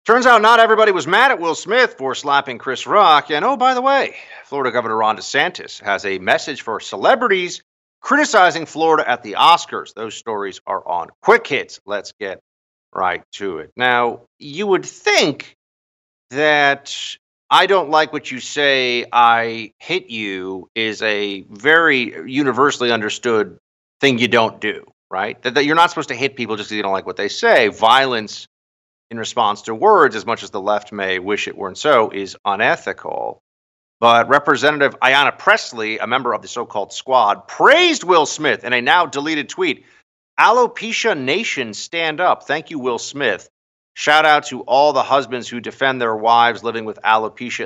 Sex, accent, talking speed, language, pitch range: male, American, 175 wpm, English, 105-145 Hz